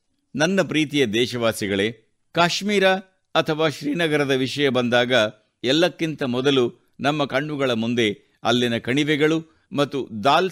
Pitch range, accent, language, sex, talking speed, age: 120-165 Hz, native, Kannada, male, 95 wpm, 60-79